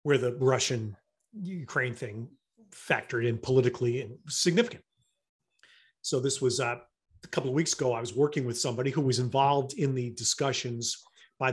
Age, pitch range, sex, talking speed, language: 40-59, 120-160 Hz, male, 160 wpm, English